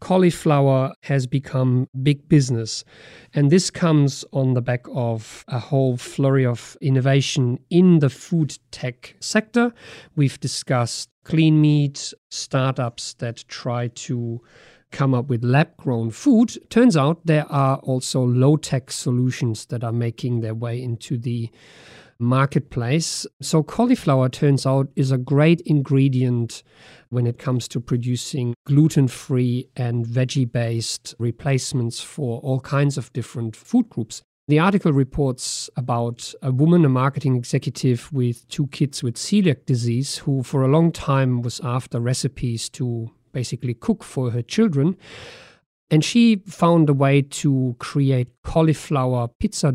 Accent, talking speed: German, 135 wpm